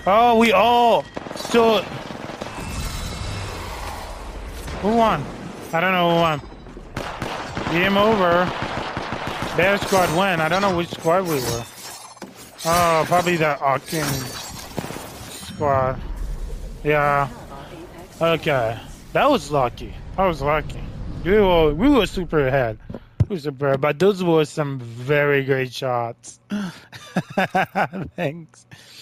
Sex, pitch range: male, 115-165 Hz